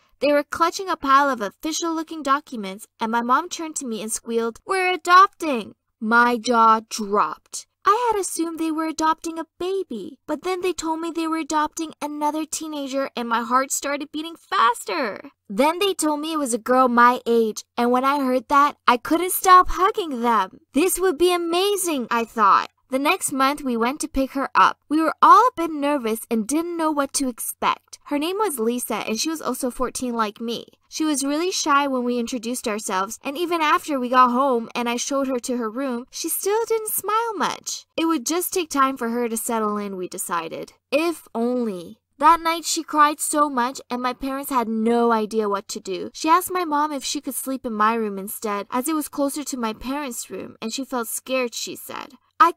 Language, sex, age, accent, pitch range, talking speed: English, female, 20-39, American, 240-325 Hz, 210 wpm